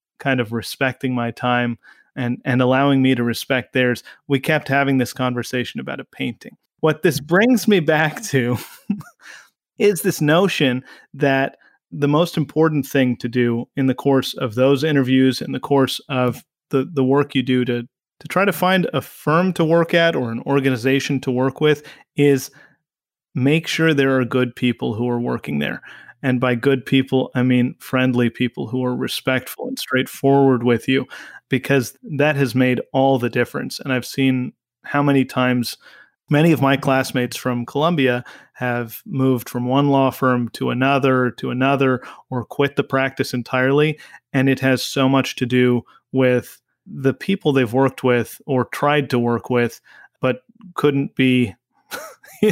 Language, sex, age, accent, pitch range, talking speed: English, male, 30-49, American, 125-145 Hz, 170 wpm